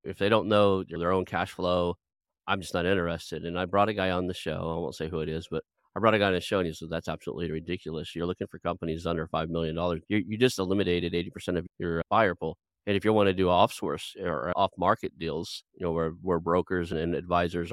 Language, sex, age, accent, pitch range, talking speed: English, male, 40-59, American, 80-95 Hz, 245 wpm